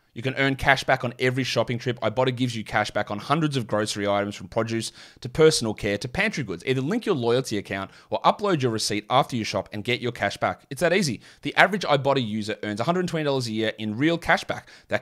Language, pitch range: English, 110-140 Hz